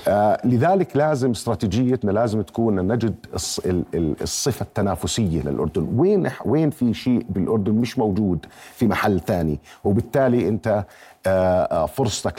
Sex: male